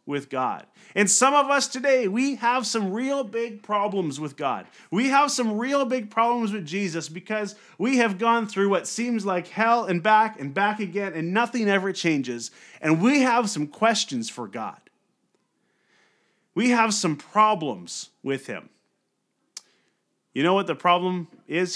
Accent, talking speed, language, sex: American, 165 wpm, English, male